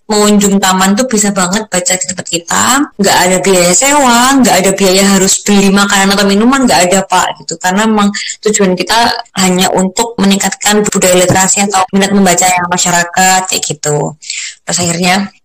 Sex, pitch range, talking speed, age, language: female, 180-210 Hz, 165 wpm, 20-39, Indonesian